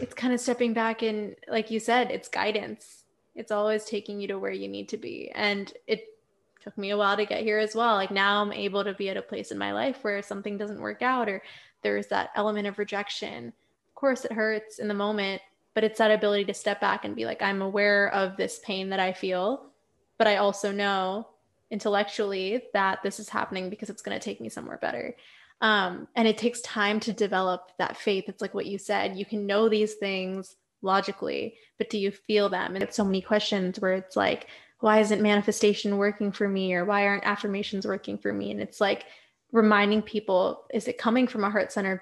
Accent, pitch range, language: American, 195-215 Hz, English